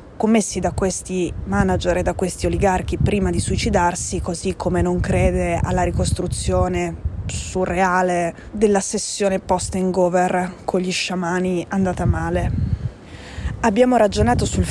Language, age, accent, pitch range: Italian, 20-39, native, 175-200 Hz